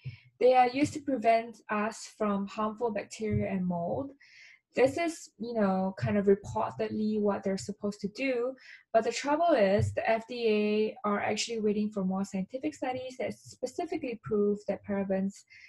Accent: Malaysian